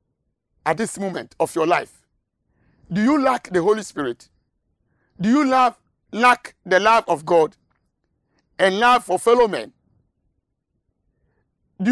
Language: English